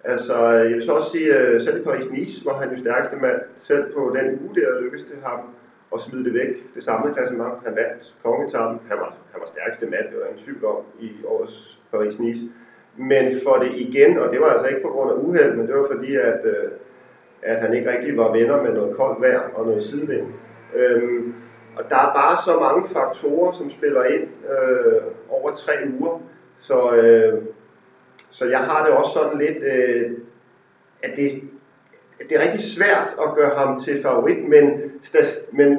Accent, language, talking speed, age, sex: native, Danish, 190 wpm, 40-59, male